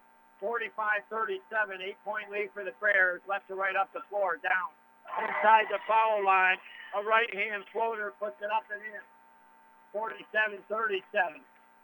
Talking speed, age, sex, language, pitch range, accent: 125 wpm, 60-79, male, English, 155-215 Hz, American